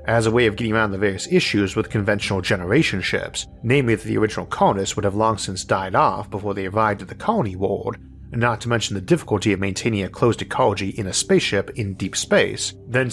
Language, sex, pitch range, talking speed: English, male, 95-125 Hz, 220 wpm